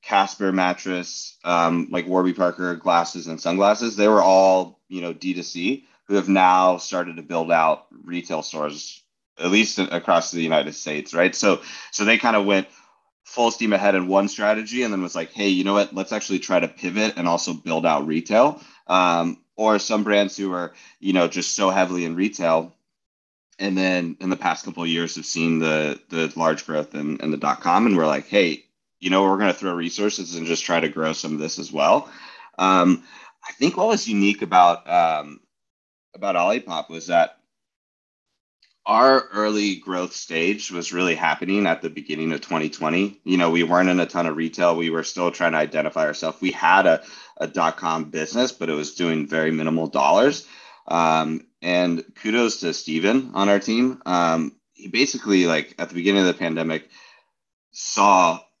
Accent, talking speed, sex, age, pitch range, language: American, 190 wpm, male, 30-49, 80-100 Hz, English